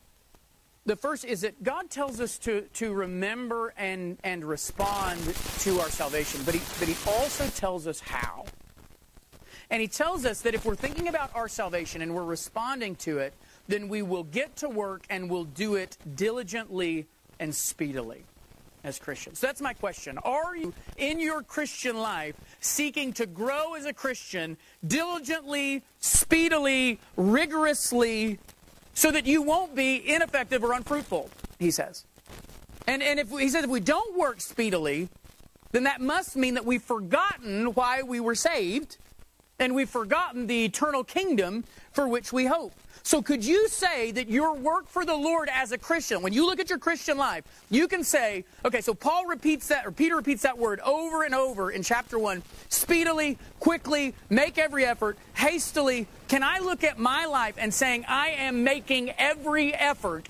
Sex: male